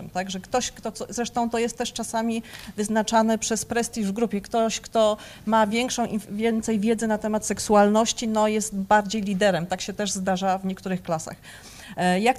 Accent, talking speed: native, 170 wpm